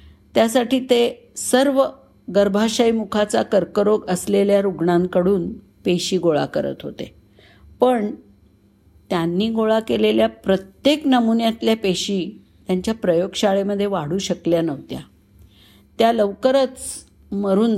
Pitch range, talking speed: 165-235 Hz, 90 wpm